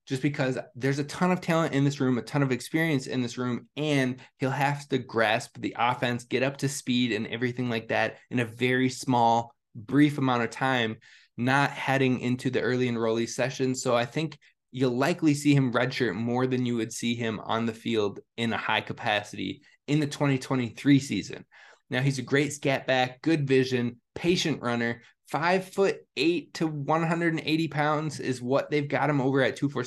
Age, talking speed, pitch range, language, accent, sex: 20-39, 195 wpm, 120-145 Hz, English, American, male